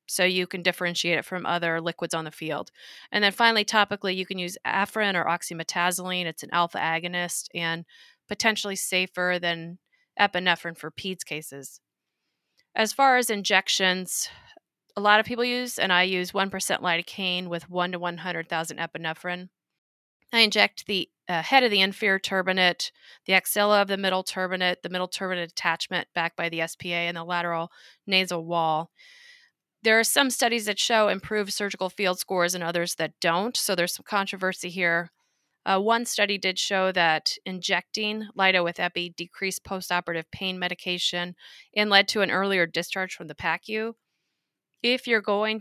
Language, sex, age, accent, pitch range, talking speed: English, female, 30-49, American, 170-200 Hz, 165 wpm